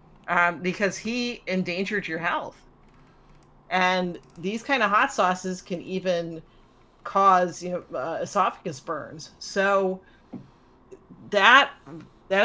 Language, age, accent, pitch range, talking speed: English, 40-59, American, 155-200 Hz, 110 wpm